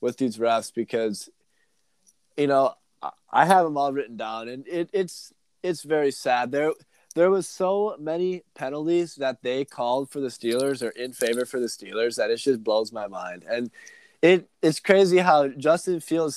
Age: 20-39